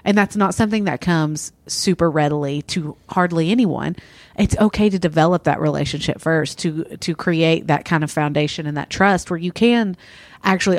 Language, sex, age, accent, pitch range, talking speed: English, female, 40-59, American, 150-190 Hz, 180 wpm